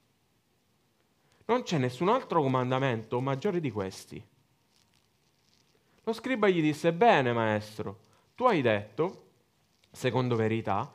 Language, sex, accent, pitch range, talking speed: Italian, male, native, 110-170 Hz, 105 wpm